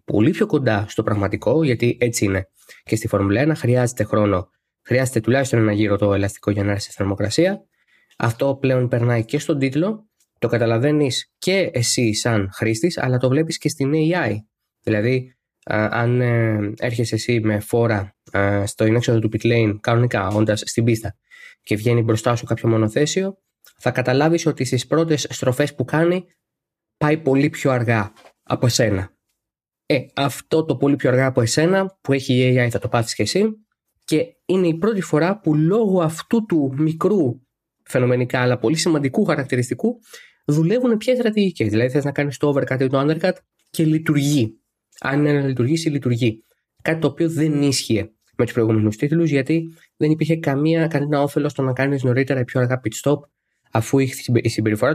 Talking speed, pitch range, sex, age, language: 170 wpm, 115-155 Hz, male, 20-39, Greek